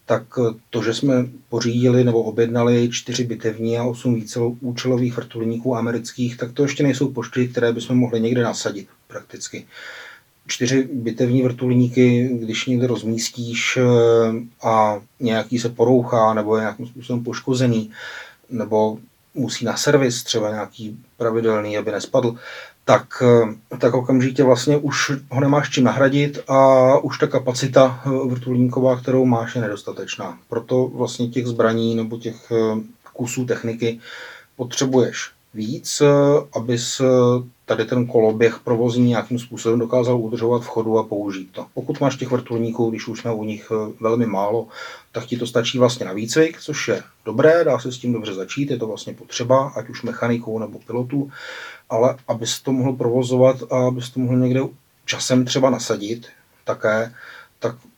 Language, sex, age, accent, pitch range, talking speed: Czech, male, 30-49, native, 115-130 Hz, 150 wpm